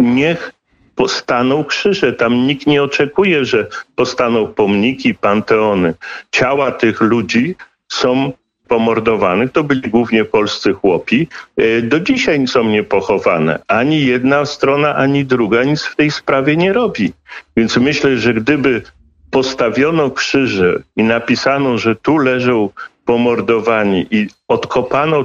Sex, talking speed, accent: male, 120 wpm, native